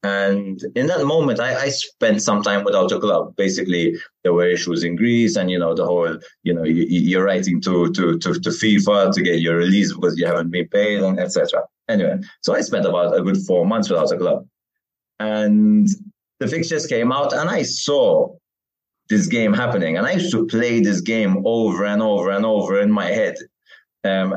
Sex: male